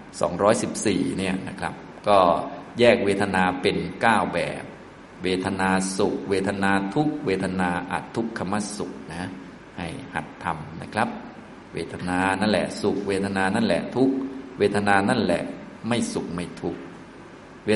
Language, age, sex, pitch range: Thai, 20-39, male, 90-105 Hz